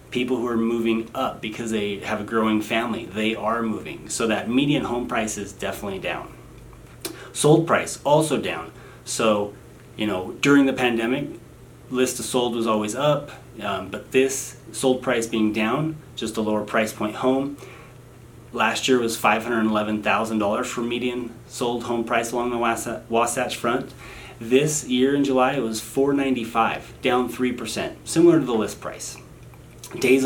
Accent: American